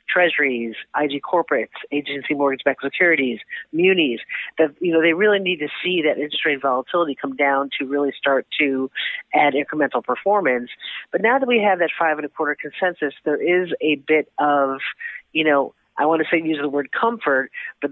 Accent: American